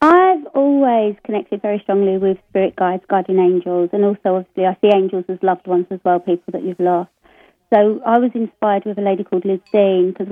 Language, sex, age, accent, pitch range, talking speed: English, female, 30-49, British, 185-205 Hz, 210 wpm